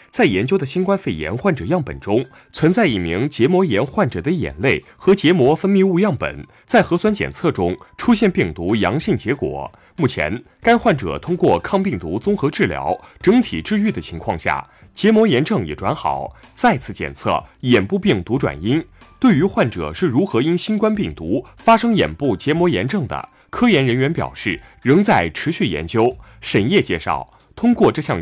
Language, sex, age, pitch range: Chinese, male, 20-39, 135-210 Hz